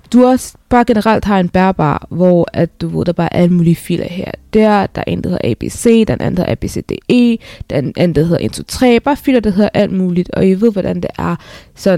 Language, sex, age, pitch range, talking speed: Danish, female, 20-39, 175-220 Hz, 225 wpm